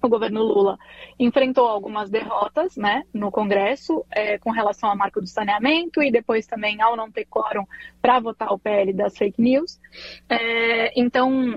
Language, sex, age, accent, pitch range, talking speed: Portuguese, female, 20-39, Brazilian, 210-260 Hz, 165 wpm